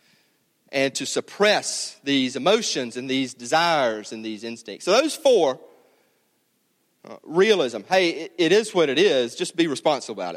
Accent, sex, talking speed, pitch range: American, male, 155 wpm, 130-190 Hz